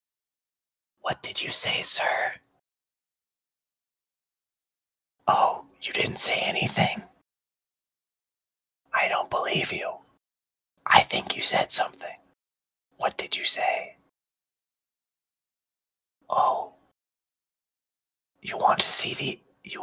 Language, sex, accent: English, male, American